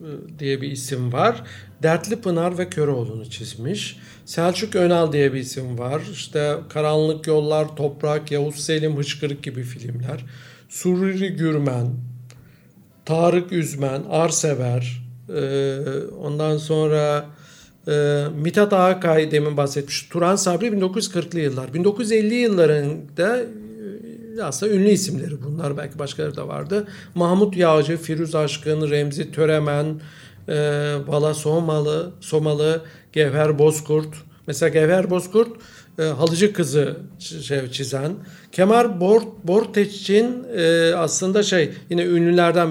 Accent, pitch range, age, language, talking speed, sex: native, 145-185 Hz, 60-79, Turkish, 105 wpm, male